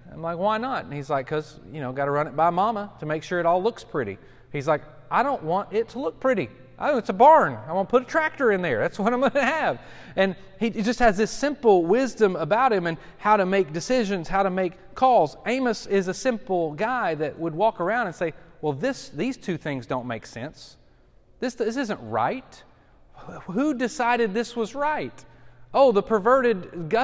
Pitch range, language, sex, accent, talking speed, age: 165-235 Hz, English, male, American, 220 wpm, 30-49